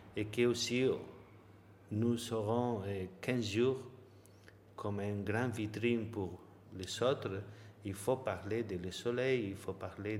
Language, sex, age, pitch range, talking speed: French, male, 50-69, 100-120 Hz, 135 wpm